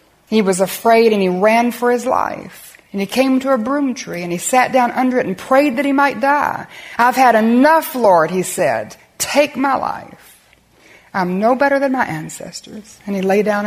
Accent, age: American, 60-79